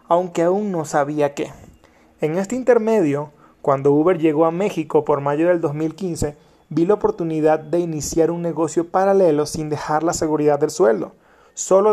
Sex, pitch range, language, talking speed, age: male, 155-180 Hz, Spanish, 160 wpm, 30-49